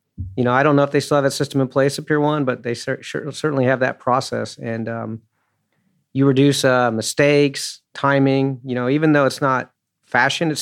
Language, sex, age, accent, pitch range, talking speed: English, male, 40-59, American, 120-140 Hz, 220 wpm